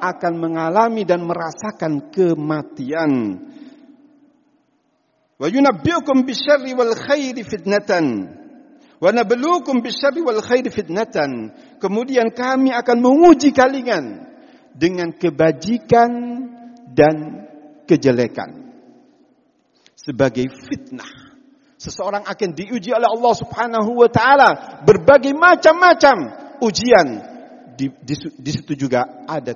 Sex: male